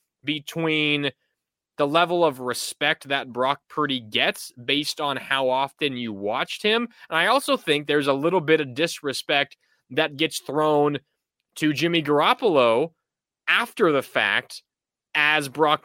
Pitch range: 135-165 Hz